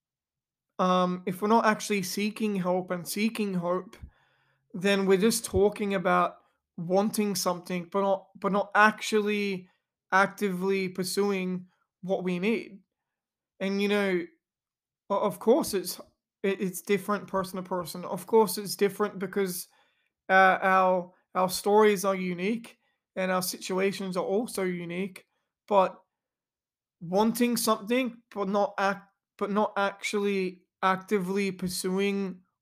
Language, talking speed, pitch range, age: English, 120 wpm, 185-205 Hz, 20-39